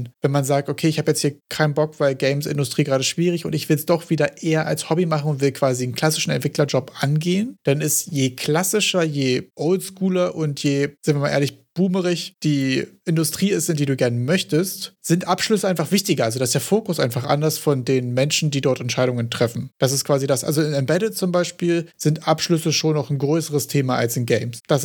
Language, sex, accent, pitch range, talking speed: German, male, German, 130-155 Hz, 215 wpm